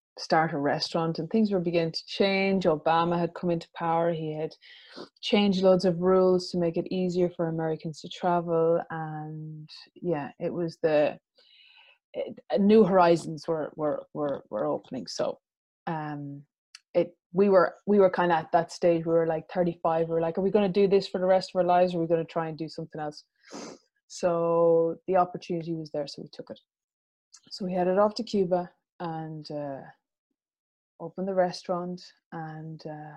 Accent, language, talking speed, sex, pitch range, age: Irish, English, 185 wpm, female, 160-185 Hz, 20-39